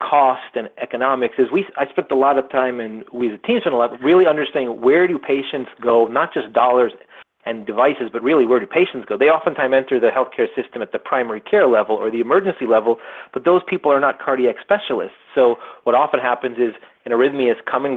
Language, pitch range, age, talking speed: English, 120-185 Hz, 30-49, 225 wpm